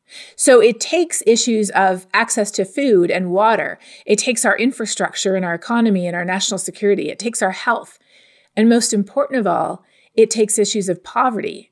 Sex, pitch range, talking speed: female, 200-275 Hz, 180 wpm